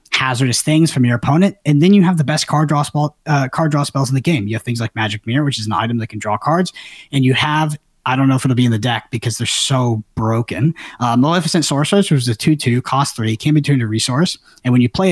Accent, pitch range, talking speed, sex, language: American, 120-155 Hz, 275 wpm, male, English